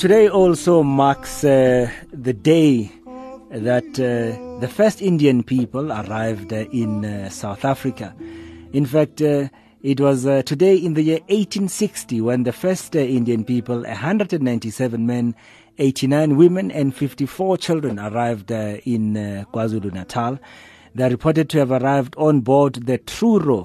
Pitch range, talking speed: 110-145 Hz, 140 wpm